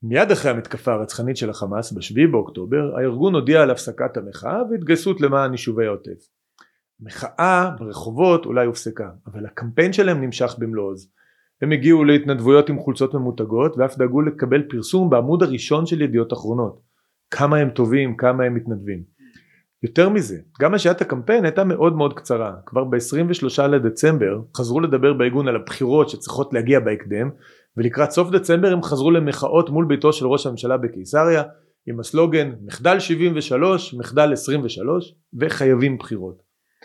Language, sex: Hebrew, male